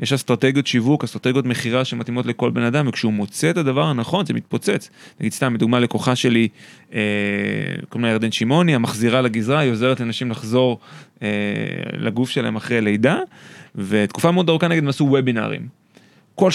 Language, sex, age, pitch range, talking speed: Hebrew, male, 30-49, 120-160 Hz, 155 wpm